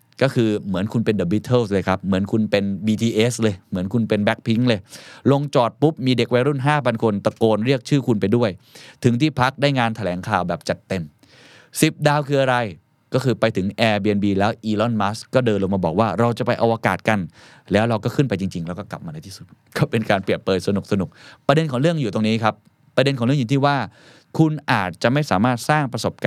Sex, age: male, 20-39